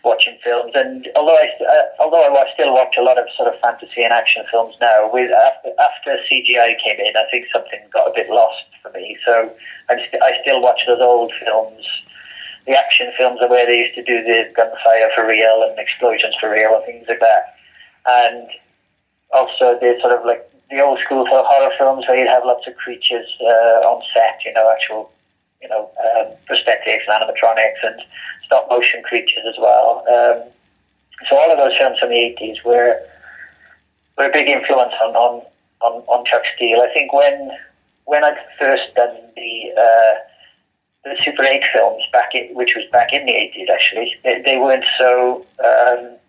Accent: British